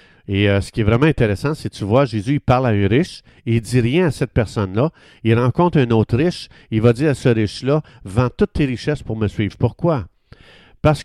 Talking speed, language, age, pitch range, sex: 255 wpm, French, 50-69, 105-145 Hz, male